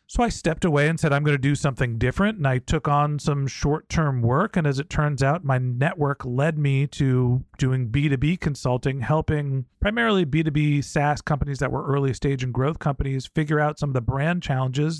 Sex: male